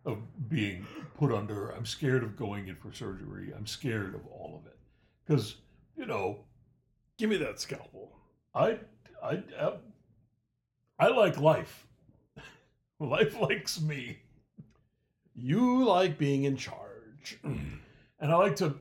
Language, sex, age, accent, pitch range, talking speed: English, male, 60-79, American, 115-150 Hz, 135 wpm